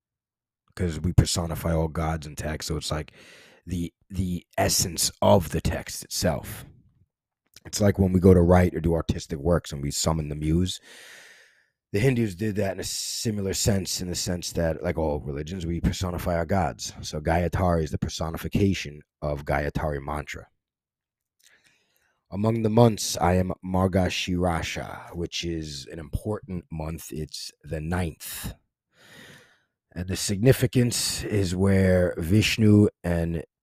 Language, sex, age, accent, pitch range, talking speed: English, male, 30-49, American, 80-100 Hz, 145 wpm